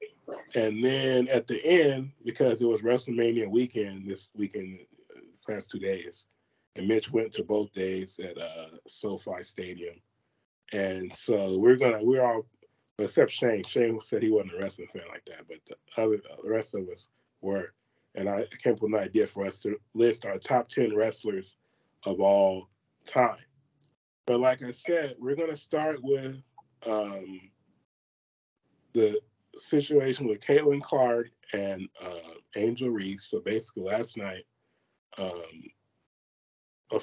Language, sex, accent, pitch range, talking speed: English, male, American, 100-125 Hz, 150 wpm